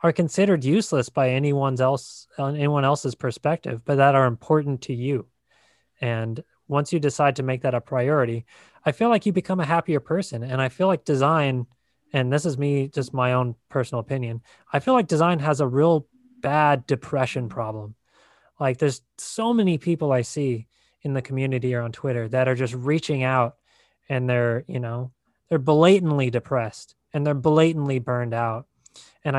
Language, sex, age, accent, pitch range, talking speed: English, male, 20-39, American, 125-150 Hz, 180 wpm